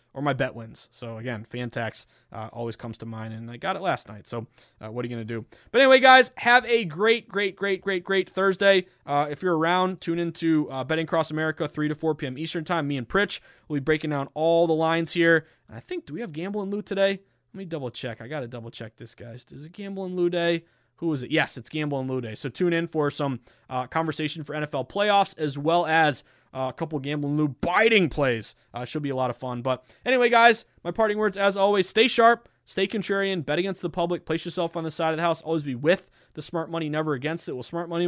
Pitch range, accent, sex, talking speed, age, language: 130-175 Hz, American, male, 260 wpm, 20-39, English